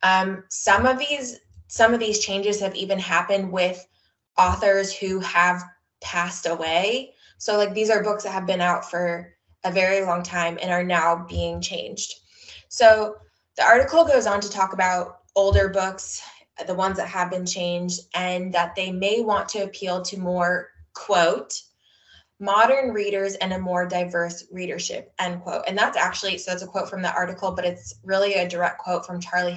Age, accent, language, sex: 20-39, American, English, female